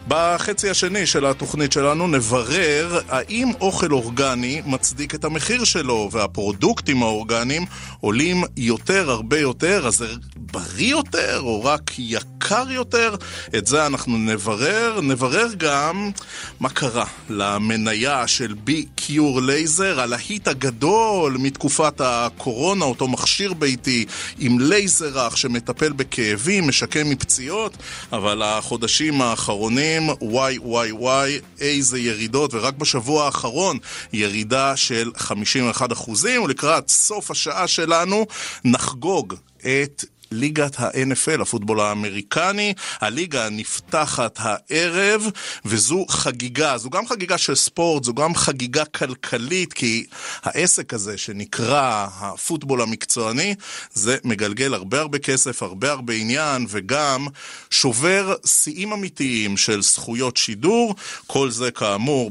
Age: 30-49